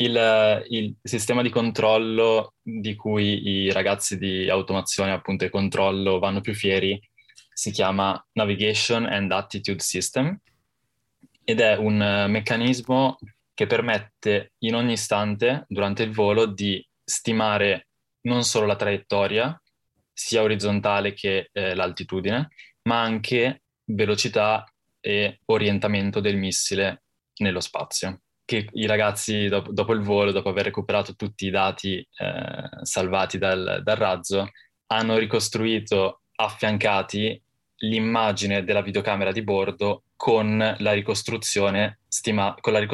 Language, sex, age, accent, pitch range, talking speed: Italian, male, 10-29, native, 100-110 Hz, 115 wpm